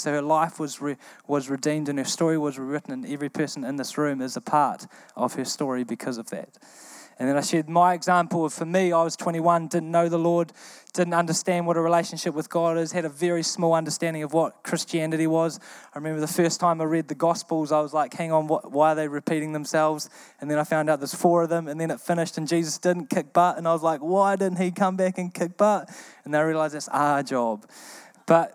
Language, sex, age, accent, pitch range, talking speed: English, male, 20-39, Australian, 150-175 Hz, 250 wpm